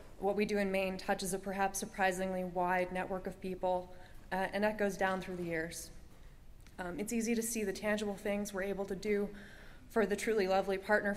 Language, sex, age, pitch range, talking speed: English, female, 20-39, 185-205 Hz, 205 wpm